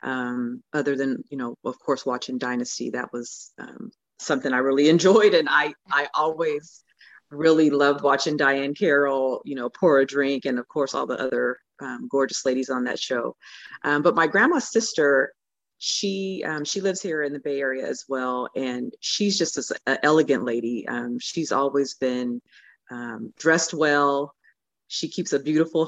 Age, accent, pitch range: 40-59, American, 130-160 Hz